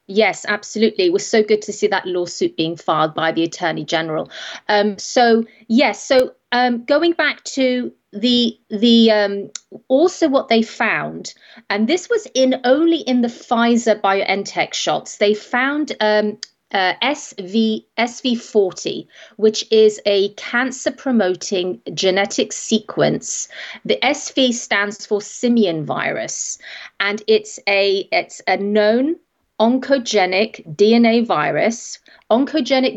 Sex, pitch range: female, 210-265 Hz